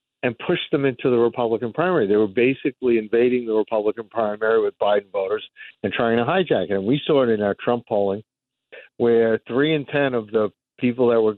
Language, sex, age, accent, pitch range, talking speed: English, male, 50-69, American, 110-135 Hz, 205 wpm